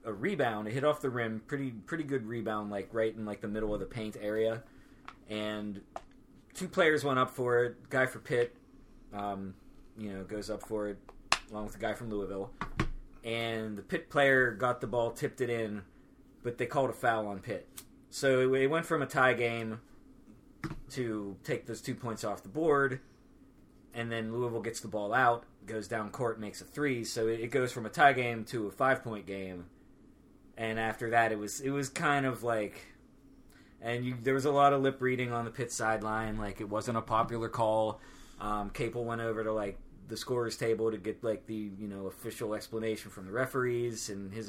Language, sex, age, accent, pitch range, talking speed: English, male, 20-39, American, 105-125 Hz, 205 wpm